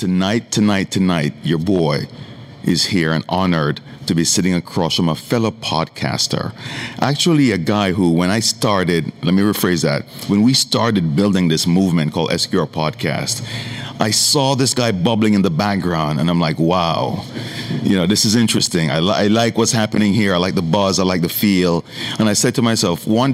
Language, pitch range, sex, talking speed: English, 90-120 Hz, male, 190 wpm